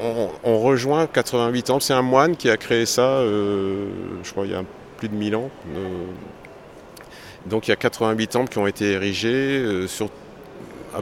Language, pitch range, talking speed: French, 90-110 Hz, 195 wpm